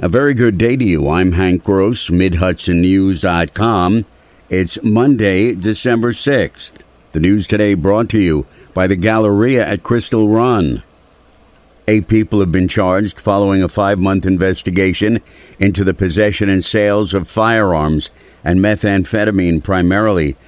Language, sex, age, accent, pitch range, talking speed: English, male, 60-79, American, 90-105 Hz, 130 wpm